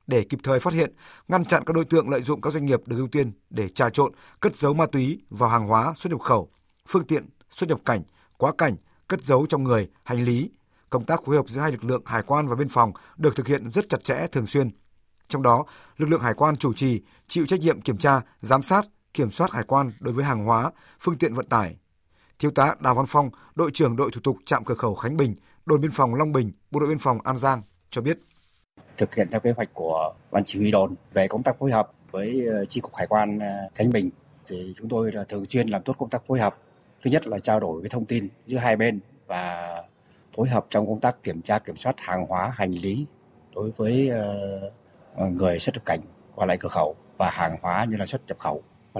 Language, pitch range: Vietnamese, 105-145 Hz